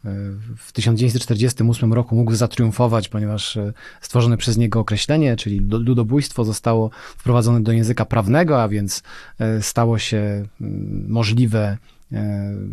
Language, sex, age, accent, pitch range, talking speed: Polish, male, 30-49, native, 110-130 Hz, 105 wpm